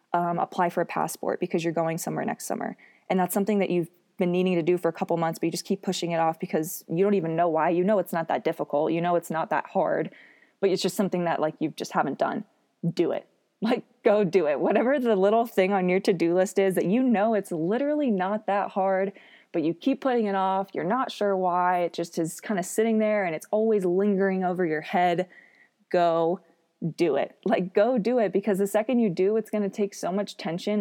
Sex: female